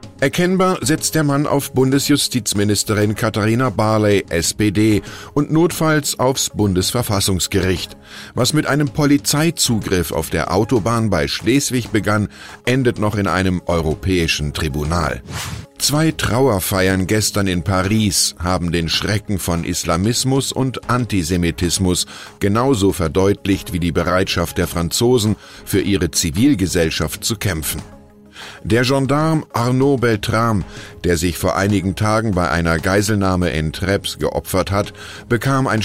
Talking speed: 120 wpm